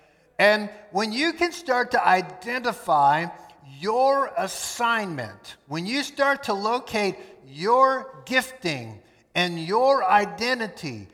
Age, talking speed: 50-69, 100 wpm